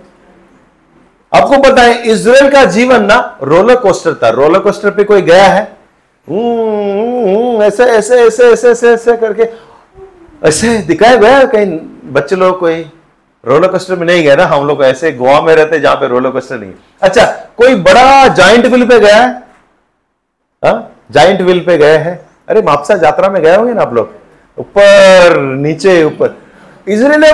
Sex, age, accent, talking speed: male, 40-59, native, 165 wpm